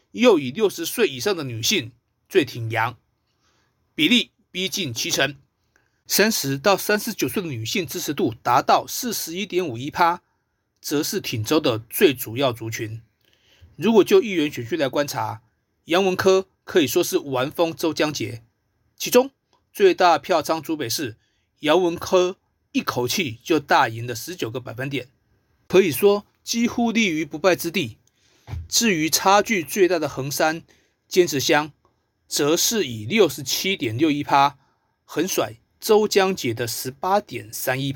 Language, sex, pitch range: Chinese, male, 115-185 Hz